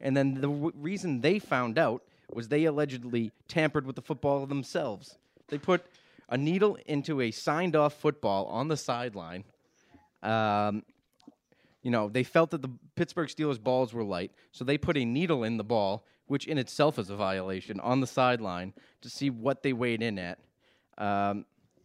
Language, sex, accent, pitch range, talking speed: English, male, American, 110-140 Hz, 175 wpm